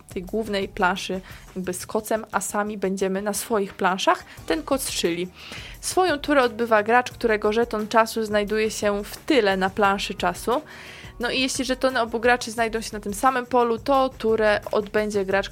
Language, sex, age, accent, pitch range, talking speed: Polish, female, 20-39, native, 205-235 Hz, 165 wpm